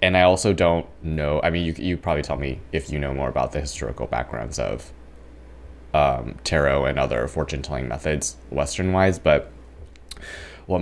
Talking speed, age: 165 wpm, 20-39